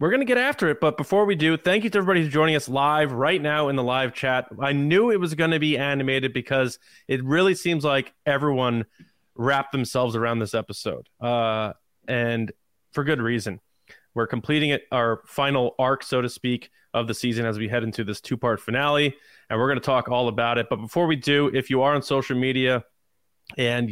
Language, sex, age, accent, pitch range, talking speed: English, male, 20-39, American, 115-150 Hz, 215 wpm